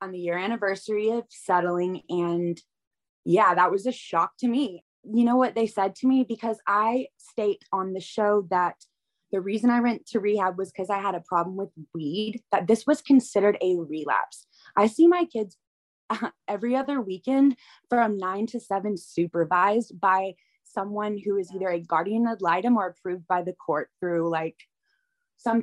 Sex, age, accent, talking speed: female, 20-39, American, 180 wpm